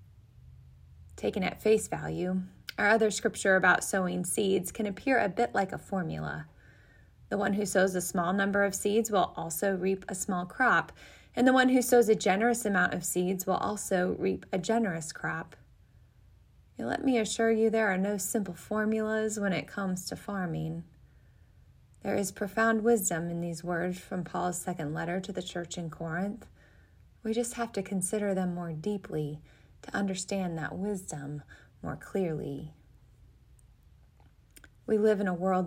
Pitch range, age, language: 170-215 Hz, 20-39, English